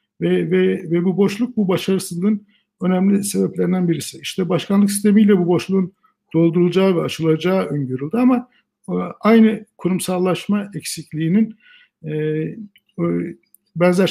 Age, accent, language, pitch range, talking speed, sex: 60-79, native, Turkish, 150-200 Hz, 100 wpm, male